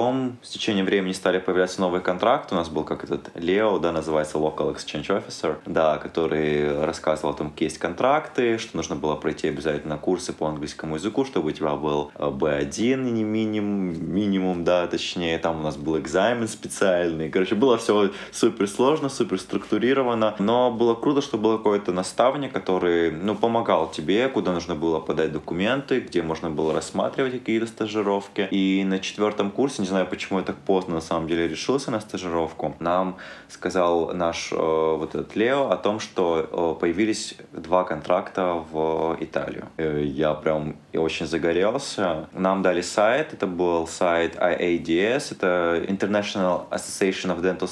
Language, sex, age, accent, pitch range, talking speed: Russian, male, 20-39, native, 80-100 Hz, 155 wpm